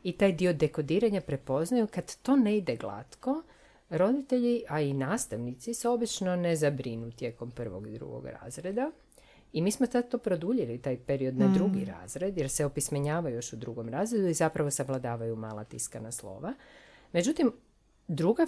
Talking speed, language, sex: 160 wpm, Croatian, female